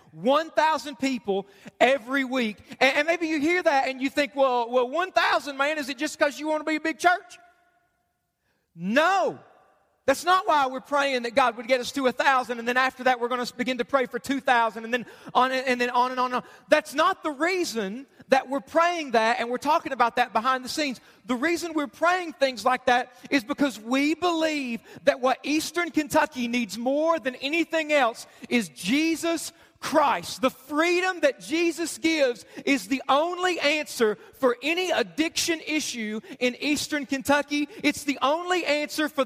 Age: 40-59